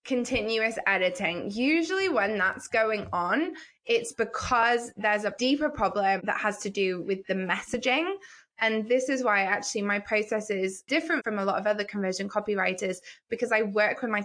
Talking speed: 175 wpm